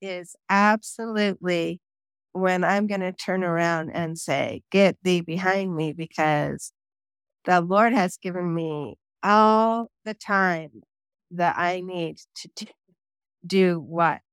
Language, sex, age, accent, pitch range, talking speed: English, female, 50-69, American, 170-210 Hz, 120 wpm